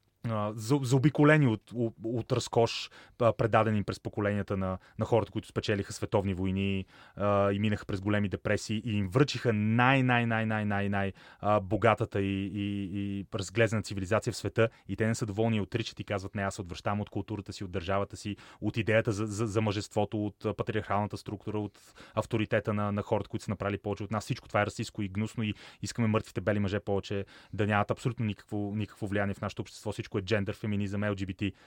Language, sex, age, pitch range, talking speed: Bulgarian, male, 30-49, 105-120 Hz, 200 wpm